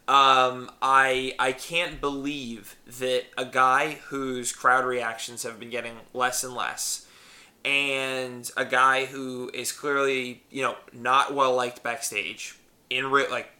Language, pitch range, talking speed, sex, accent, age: English, 125-140 Hz, 140 wpm, male, American, 20-39